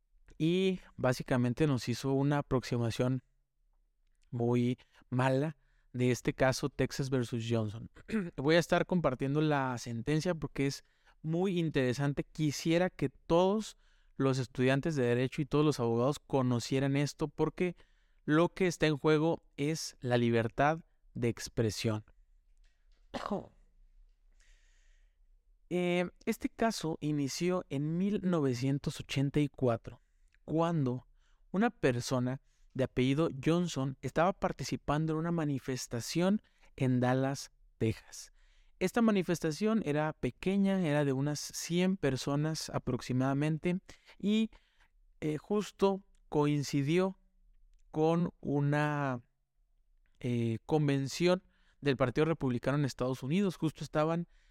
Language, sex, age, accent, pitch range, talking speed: Spanish, male, 30-49, Mexican, 130-165 Hz, 100 wpm